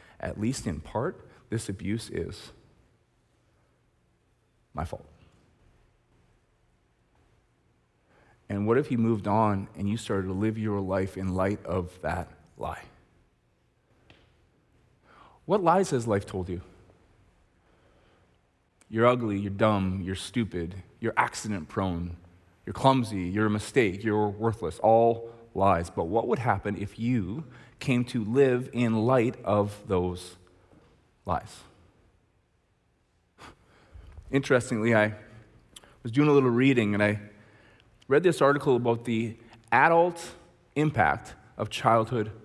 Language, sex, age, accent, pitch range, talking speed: English, male, 30-49, American, 95-120 Hz, 115 wpm